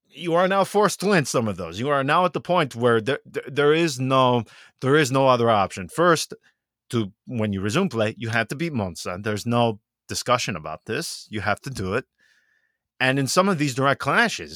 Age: 30-49